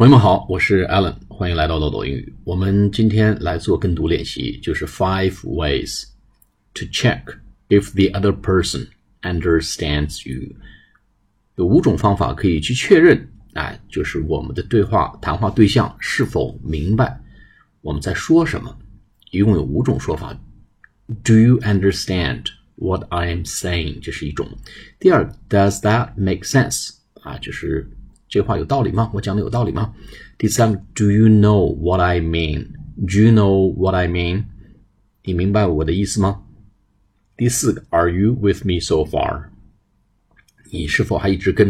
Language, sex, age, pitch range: Chinese, male, 50-69, 90-110 Hz